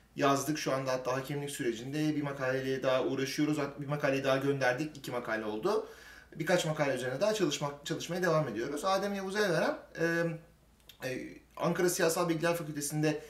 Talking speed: 150 wpm